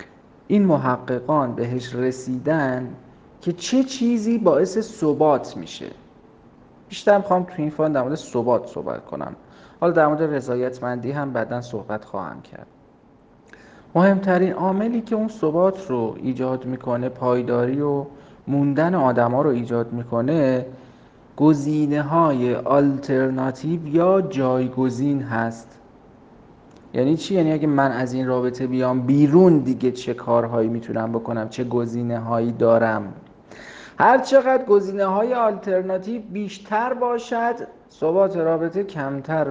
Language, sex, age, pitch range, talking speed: Persian, male, 40-59, 125-180 Hz, 120 wpm